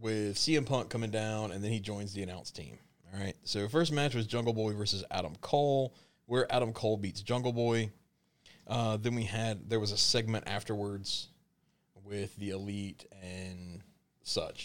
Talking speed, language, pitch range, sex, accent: 175 wpm, English, 105-135 Hz, male, American